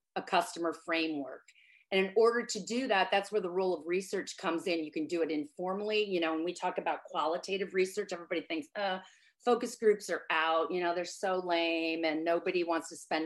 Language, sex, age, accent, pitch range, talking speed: English, female, 40-59, American, 165-205 Hz, 215 wpm